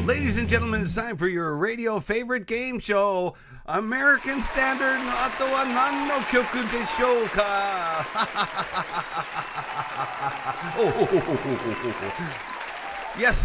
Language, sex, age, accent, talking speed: English, male, 50-69, American, 80 wpm